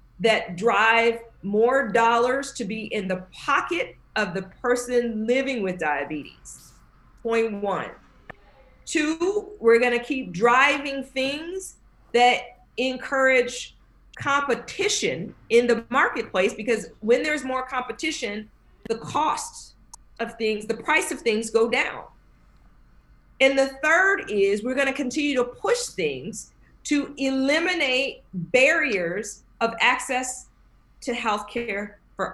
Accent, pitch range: American, 220-275 Hz